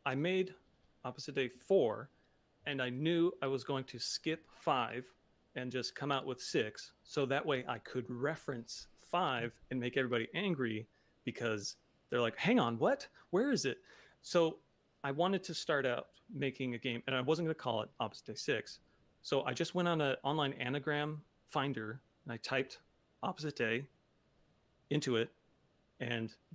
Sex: male